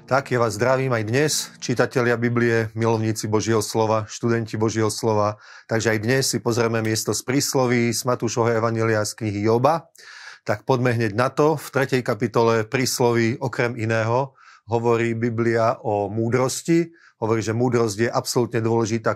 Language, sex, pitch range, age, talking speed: Slovak, male, 110-120 Hz, 30-49, 155 wpm